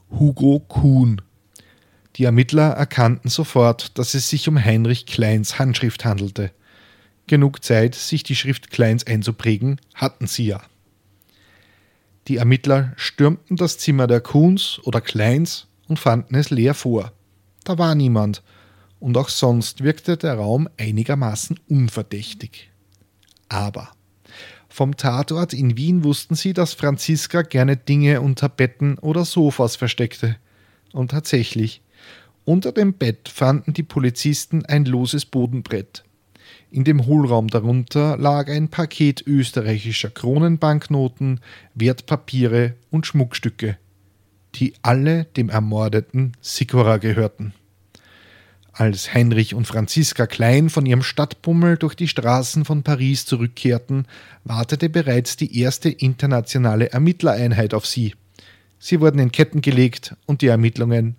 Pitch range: 110-145 Hz